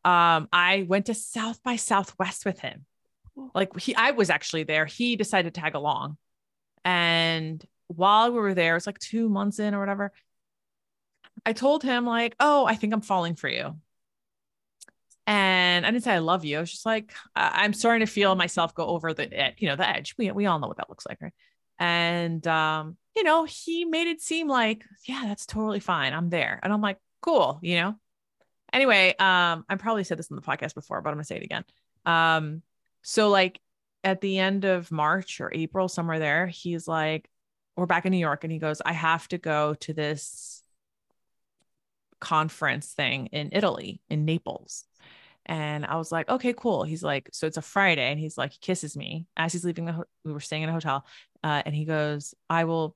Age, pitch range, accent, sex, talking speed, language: 30-49, 160-205 Hz, American, female, 205 wpm, English